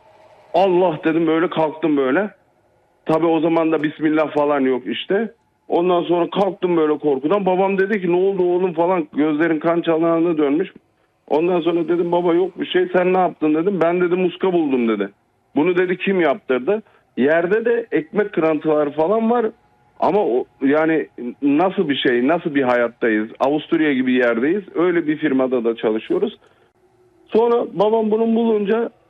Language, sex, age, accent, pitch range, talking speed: Turkish, male, 50-69, native, 140-190 Hz, 155 wpm